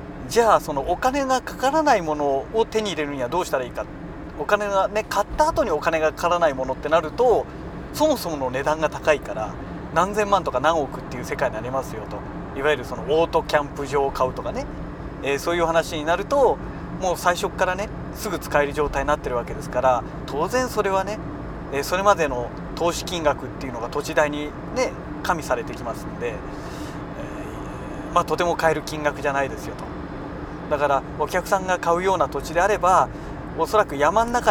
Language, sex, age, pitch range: Japanese, male, 40-59, 145-190 Hz